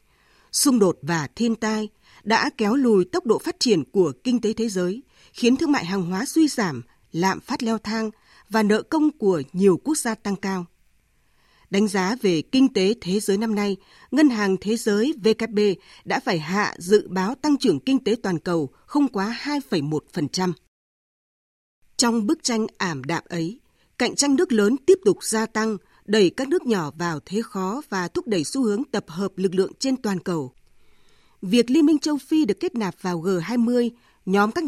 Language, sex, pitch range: Vietnamese, female, 190-255 Hz